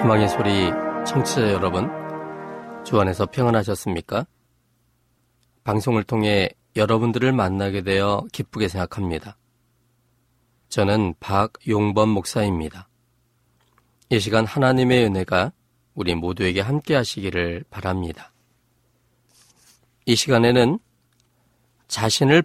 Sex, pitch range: male, 95-120 Hz